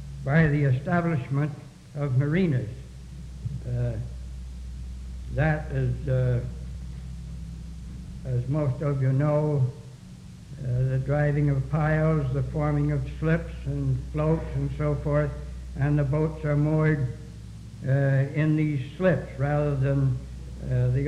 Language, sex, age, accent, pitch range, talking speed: English, male, 60-79, American, 115-165 Hz, 115 wpm